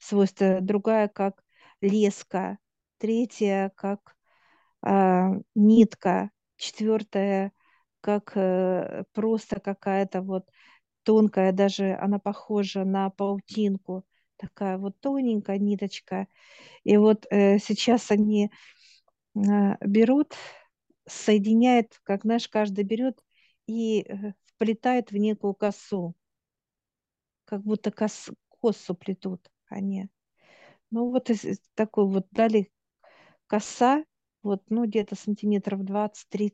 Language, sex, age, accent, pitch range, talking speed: Russian, female, 50-69, native, 195-220 Hz, 95 wpm